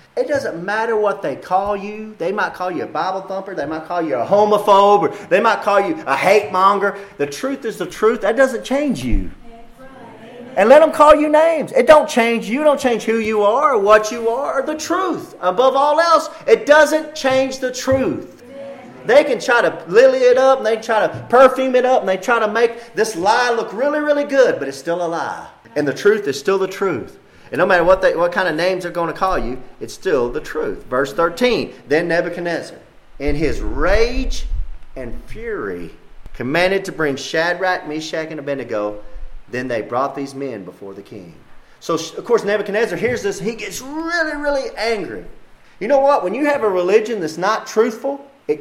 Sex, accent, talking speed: male, American, 205 wpm